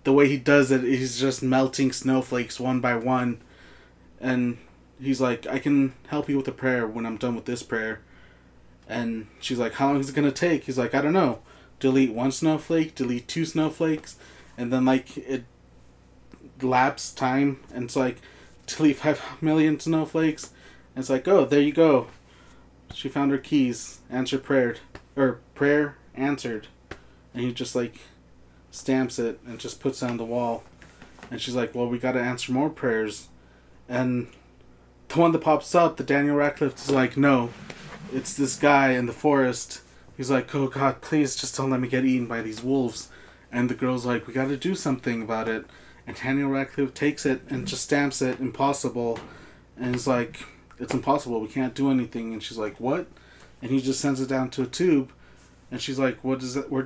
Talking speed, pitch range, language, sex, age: 195 wpm, 120-140 Hz, English, male, 20-39